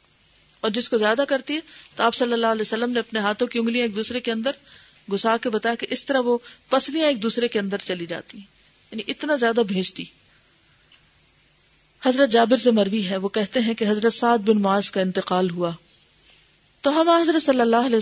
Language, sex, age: Urdu, female, 40-59